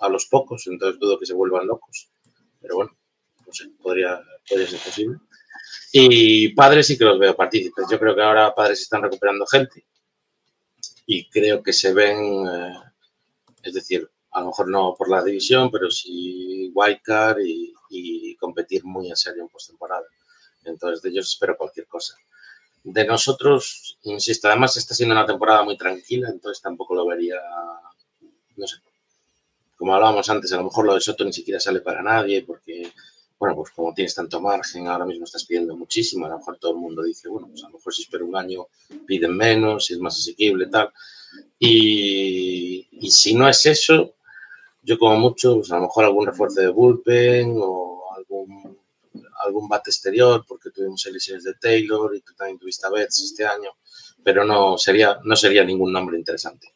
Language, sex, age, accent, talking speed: Spanish, male, 30-49, Spanish, 180 wpm